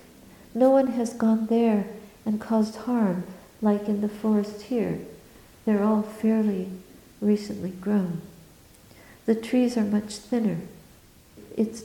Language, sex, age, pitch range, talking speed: English, female, 60-79, 200-235 Hz, 120 wpm